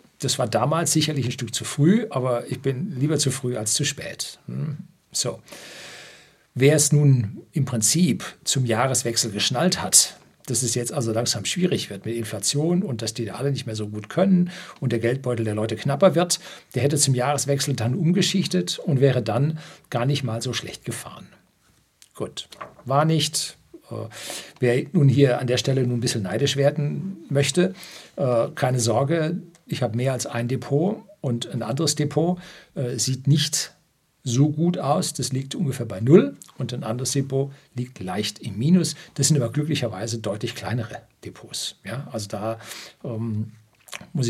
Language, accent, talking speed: German, German, 170 wpm